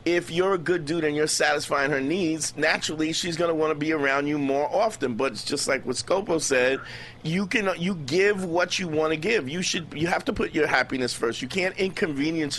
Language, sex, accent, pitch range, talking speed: English, male, American, 140-180 Hz, 230 wpm